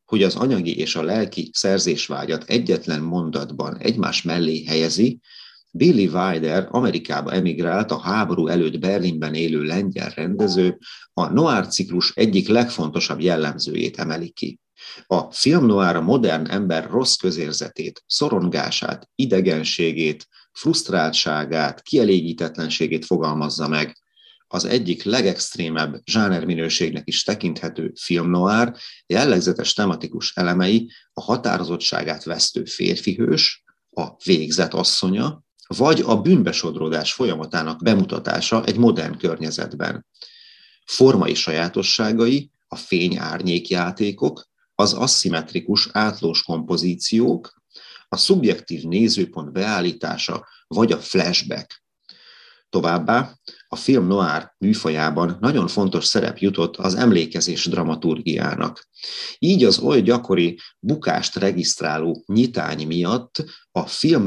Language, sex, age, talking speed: Hungarian, male, 30-49, 100 wpm